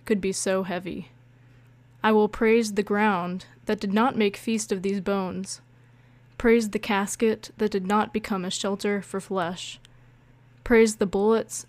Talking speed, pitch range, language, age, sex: 160 wpm, 190-215 Hz, English, 20-39, female